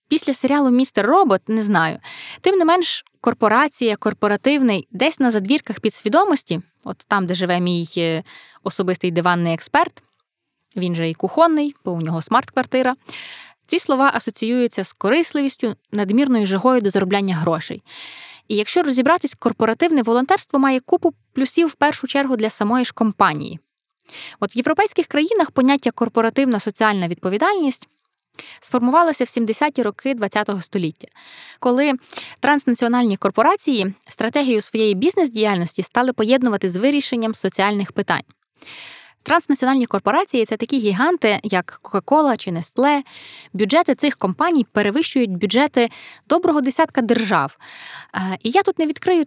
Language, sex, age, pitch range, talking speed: Ukrainian, female, 20-39, 200-280 Hz, 130 wpm